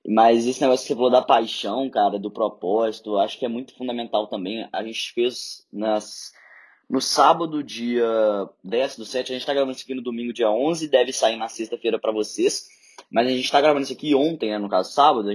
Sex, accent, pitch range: male, Brazilian, 120-150 Hz